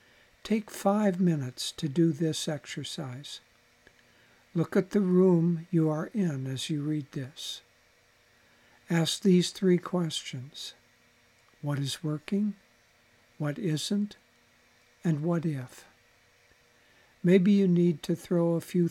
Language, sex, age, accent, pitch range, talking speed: English, male, 60-79, American, 135-175 Hz, 115 wpm